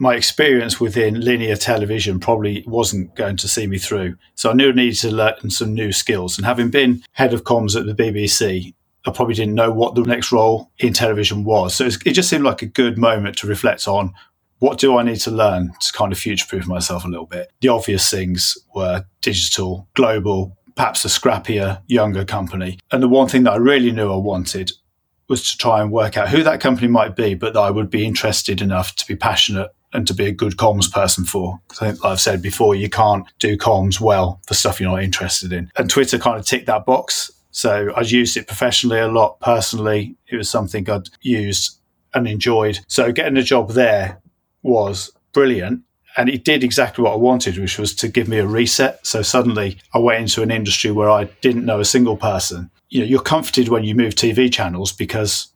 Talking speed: 215 wpm